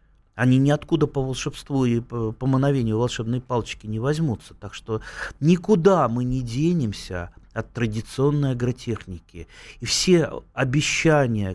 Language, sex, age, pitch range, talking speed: Russian, male, 30-49, 110-145 Hz, 120 wpm